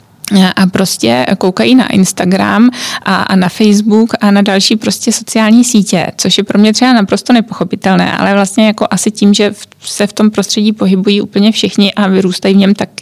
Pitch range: 190-220 Hz